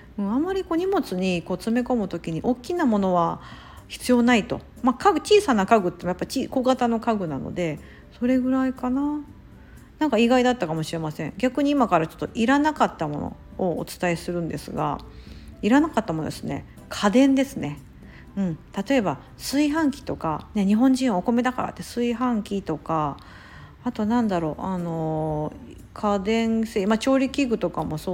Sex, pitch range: female, 165-255 Hz